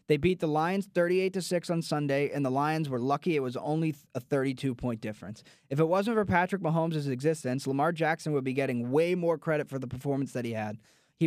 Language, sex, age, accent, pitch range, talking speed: English, male, 20-39, American, 140-170 Hz, 215 wpm